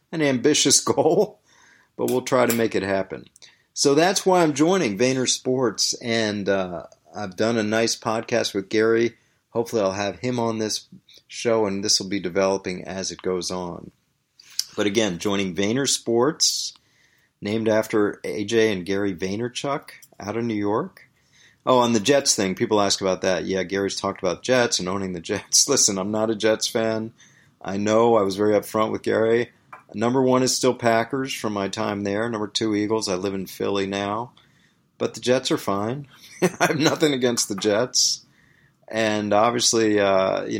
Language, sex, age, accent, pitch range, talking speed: English, male, 40-59, American, 100-120 Hz, 180 wpm